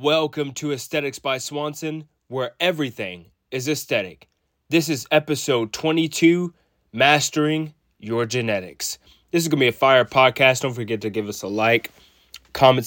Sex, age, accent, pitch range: male, 20-39, American, 110-145 Hz